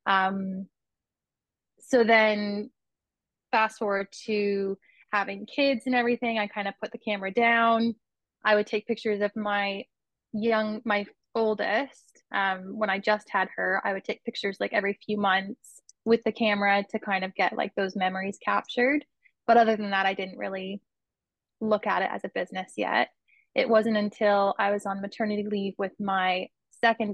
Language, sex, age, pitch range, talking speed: English, female, 20-39, 195-225 Hz, 170 wpm